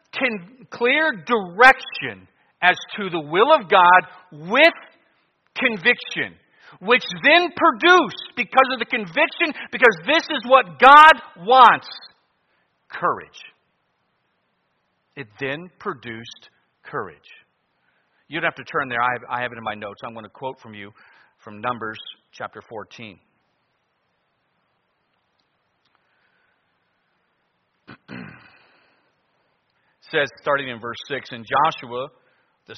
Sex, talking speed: male, 110 wpm